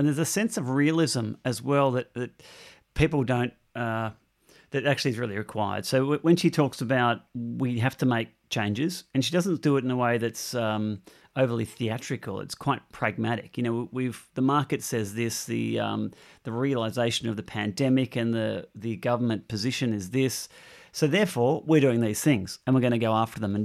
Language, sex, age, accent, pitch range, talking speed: English, male, 40-59, Australian, 115-135 Hz, 200 wpm